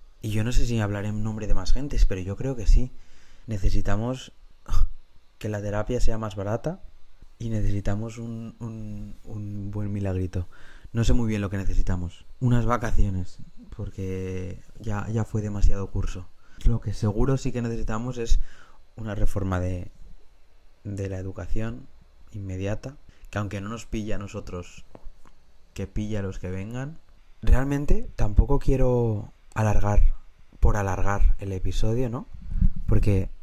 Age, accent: 20-39, Spanish